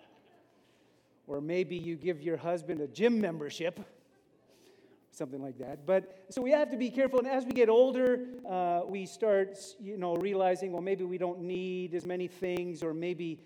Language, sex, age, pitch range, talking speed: English, male, 40-59, 175-225 Hz, 180 wpm